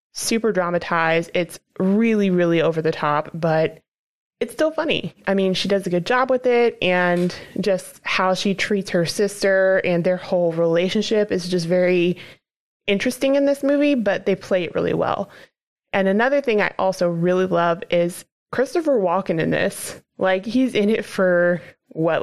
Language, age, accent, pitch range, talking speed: English, 20-39, American, 175-215 Hz, 170 wpm